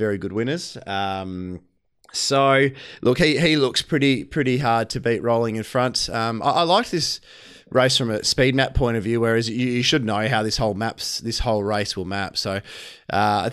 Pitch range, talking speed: 105-130 Hz, 210 wpm